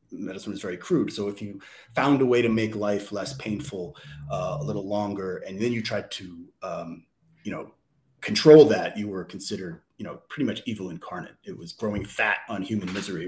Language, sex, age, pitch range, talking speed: English, male, 30-49, 90-110 Hz, 205 wpm